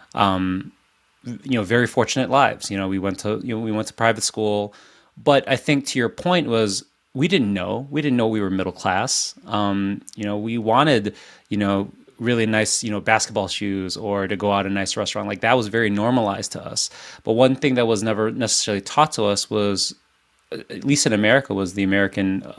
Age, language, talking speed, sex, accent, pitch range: 20-39, English, 215 wpm, male, American, 100-120 Hz